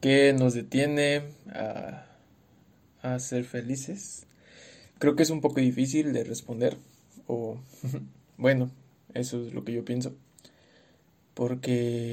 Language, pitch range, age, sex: English, 120-140 Hz, 20-39, male